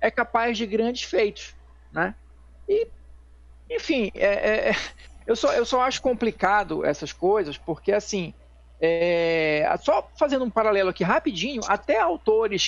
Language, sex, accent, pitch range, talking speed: Portuguese, male, Brazilian, 160-235 Hz, 135 wpm